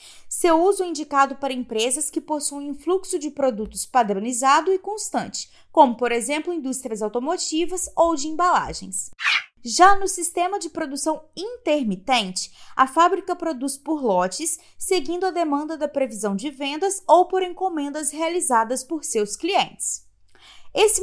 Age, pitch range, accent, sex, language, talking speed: 20-39, 270-355 Hz, Brazilian, female, Portuguese, 140 wpm